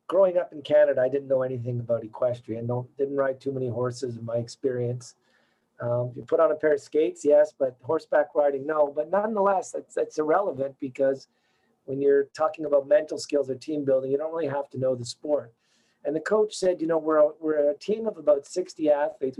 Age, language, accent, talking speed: 40-59, English, American, 210 wpm